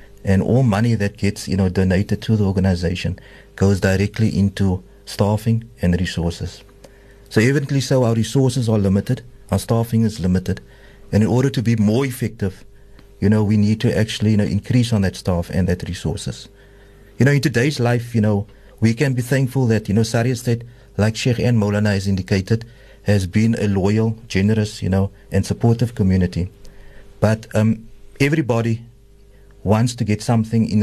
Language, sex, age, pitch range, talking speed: English, male, 50-69, 100-125 Hz, 175 wpm